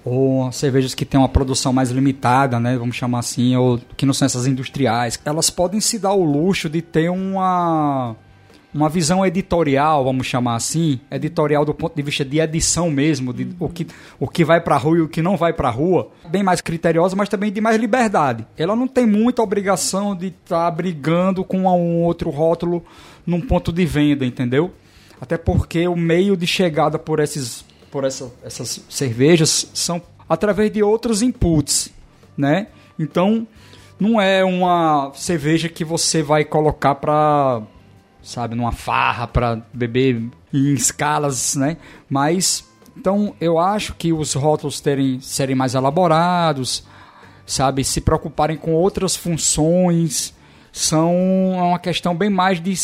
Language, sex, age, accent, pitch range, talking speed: Portuguese, male, 20-39, Brazilian, 135-180 Hz, 160 wpm